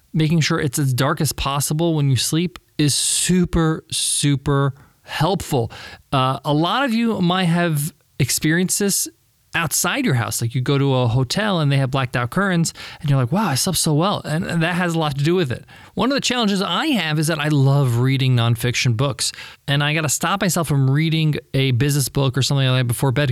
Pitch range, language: 130-165 Hz, English